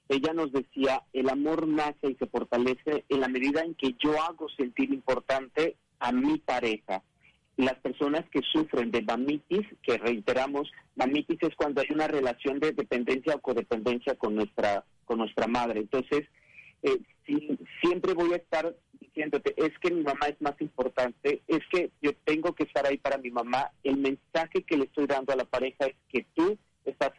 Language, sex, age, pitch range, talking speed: Spanish, male, 40-59, 135-170 Hz, 180 wpm